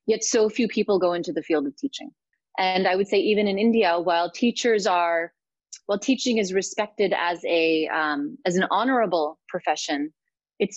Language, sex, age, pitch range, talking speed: Hindi, female, 30-49, 155-200 Hz, 180 wpm